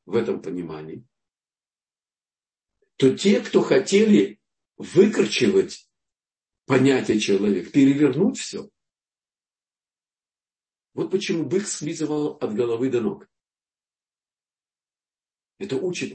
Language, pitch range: Russian, 100-135 Hz